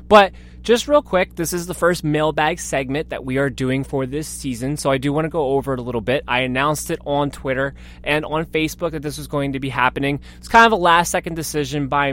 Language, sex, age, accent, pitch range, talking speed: English, male, 20-39, American, 120-160 Hz, 245 wpm